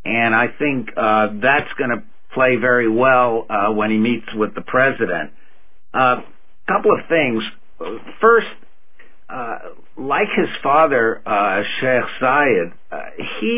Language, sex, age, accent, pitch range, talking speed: English, male, 60-79, American, 115-155 Hz, 135 wpm